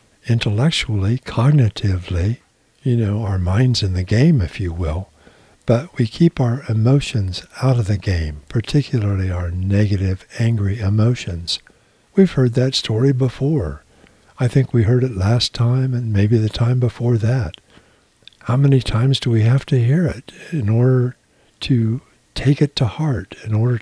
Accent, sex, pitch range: American, male, 100-125 Hz